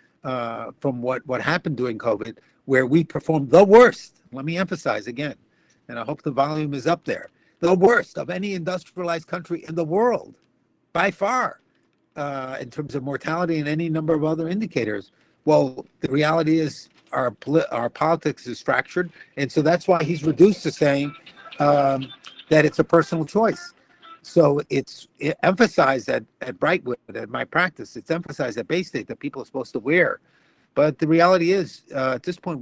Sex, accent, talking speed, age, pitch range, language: male, American, 180 wpm, 60-79, 135-175 Hz, English